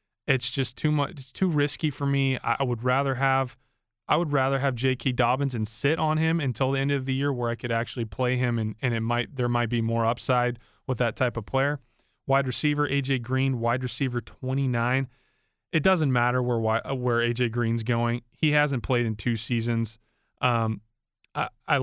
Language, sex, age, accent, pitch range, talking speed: English, male, 20-39, American, 120-140 Hz, 200 wpm